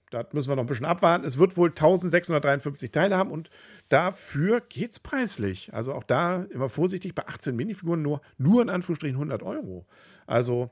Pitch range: 110-175 Hz